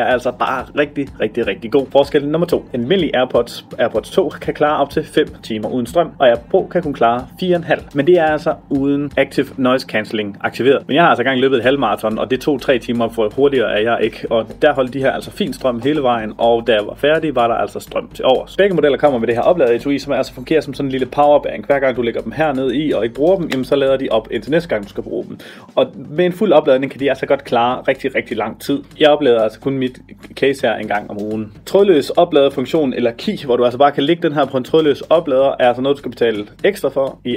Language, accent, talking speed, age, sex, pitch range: Danish, native, 275 wpm, 30-49, male, 125-155 Hz